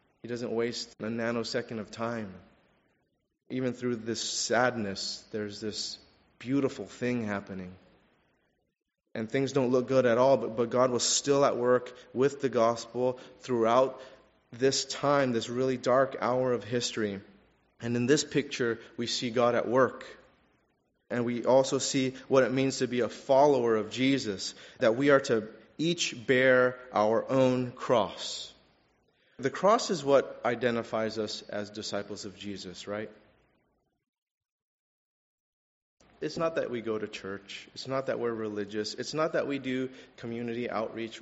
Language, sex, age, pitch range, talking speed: English, male, 30-49, 110-130 Hz, 150 wpm